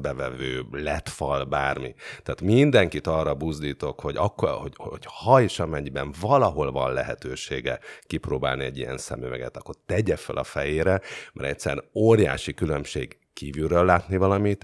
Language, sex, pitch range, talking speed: Hungarian, male, 70-95 Hz, 135 wpm